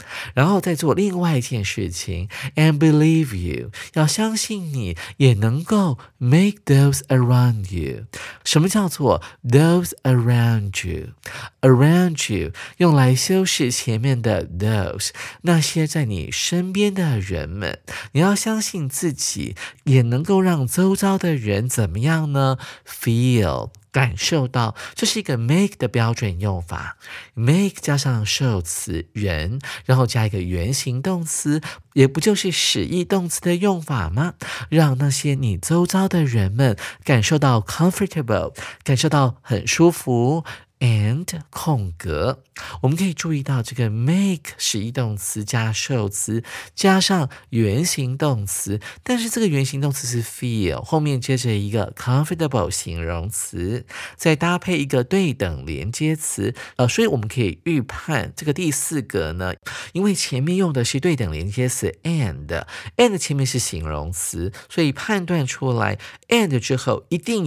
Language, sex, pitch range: Chinese, male, 110-160 Hz